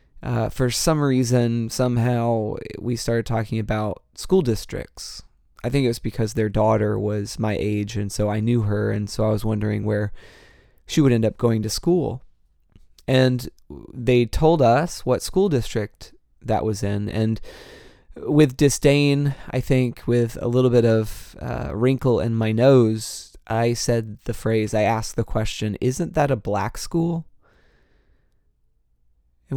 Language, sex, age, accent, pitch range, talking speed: English, male, 20-39, American, 110-125 Hz, 160 wpm